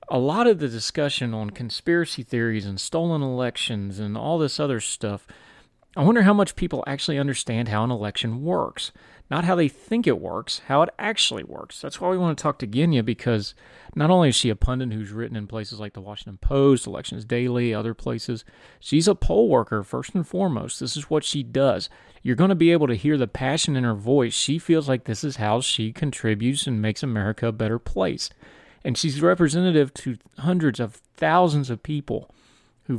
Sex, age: male, 30-49